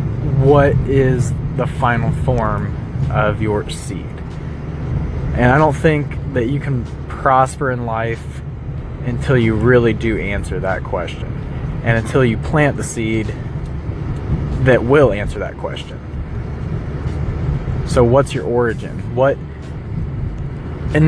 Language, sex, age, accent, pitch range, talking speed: English, male, 20-39, American, 110-135 Hz, 120 wpm